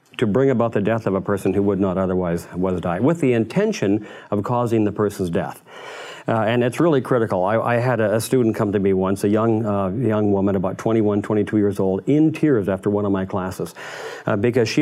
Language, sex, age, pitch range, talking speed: English, male, 50-69, 100-115 Hz, 230 wpm